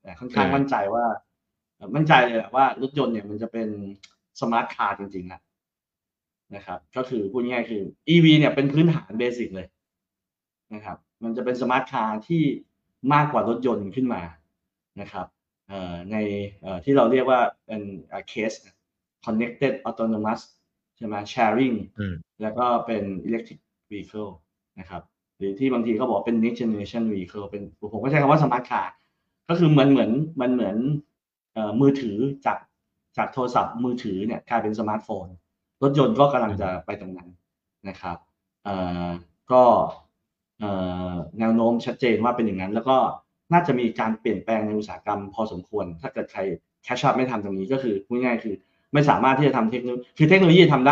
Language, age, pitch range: Thai, 30-49, 100-130 Hz